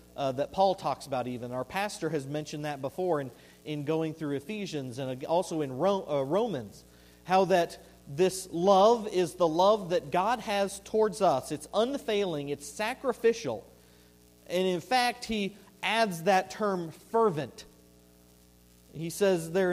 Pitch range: 120-190 Hz